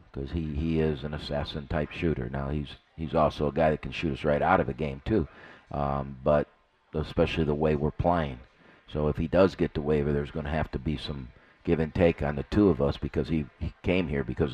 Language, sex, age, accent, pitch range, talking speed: English, male, 50-69, American, 75-90 Hz, 240 wpm